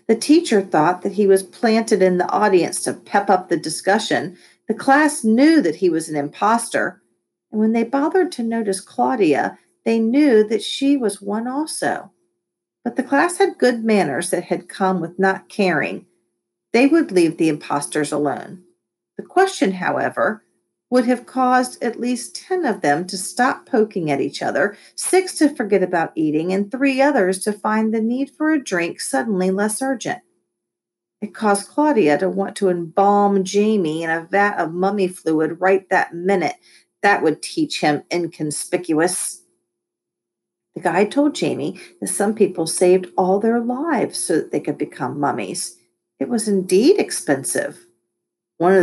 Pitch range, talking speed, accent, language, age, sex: 170-245 Hz, 165 wpm, American, English, 40-59, female